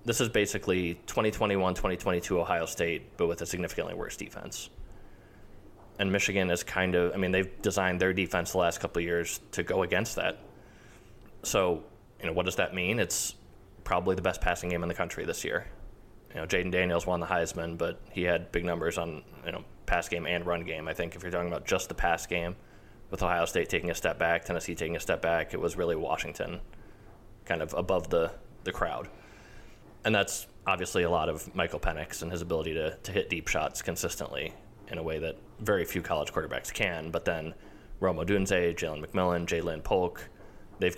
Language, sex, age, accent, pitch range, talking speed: English, male, 20-39, American, 85-105 Hz, 200 wpm